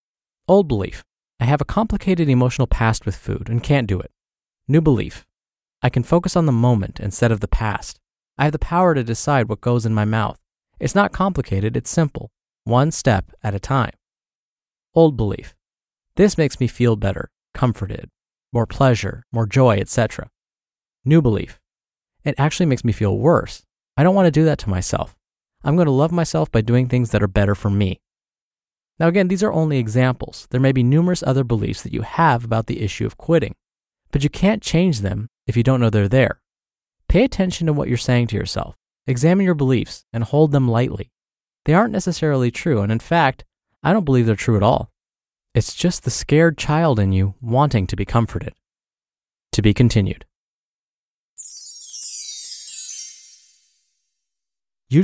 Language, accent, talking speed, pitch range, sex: English, American, 175 wpm, 105-150 Hz, male